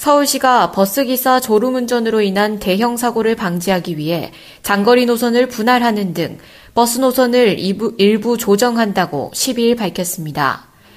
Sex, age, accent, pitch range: female, 20-39, native, 190-255 Hz